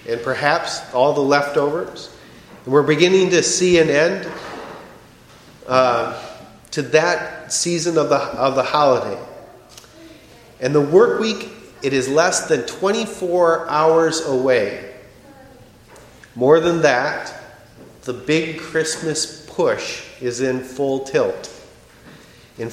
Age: 40-59